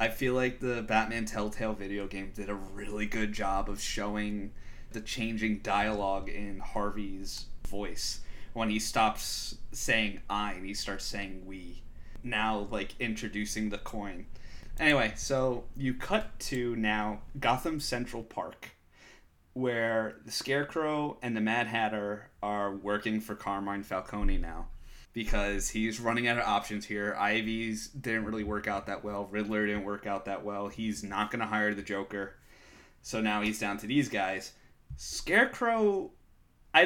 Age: 20-39